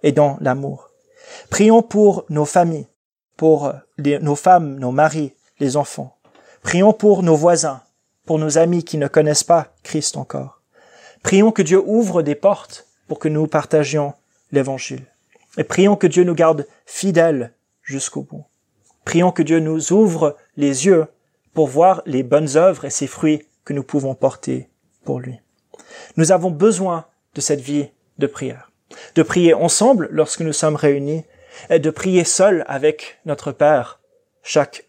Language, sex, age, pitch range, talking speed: French, male, 30-49, 145-180 Hz, 160 wpm